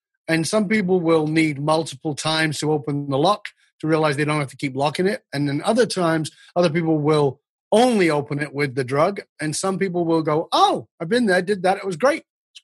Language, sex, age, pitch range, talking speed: English, male, 30-49, 140-180 Hz, 230 wpm